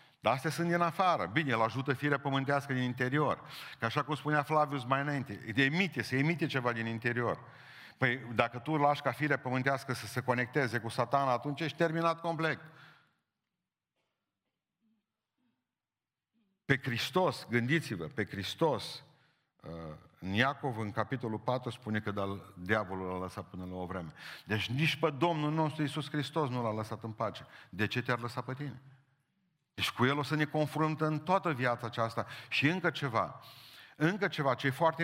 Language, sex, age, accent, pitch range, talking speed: Romanian, male, 50-69, native, 120-155 Hz, 170 wpm